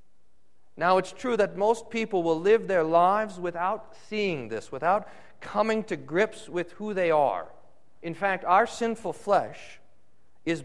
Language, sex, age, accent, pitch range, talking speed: English, male, 40-59, American, 150-205 Hz, 150 wpm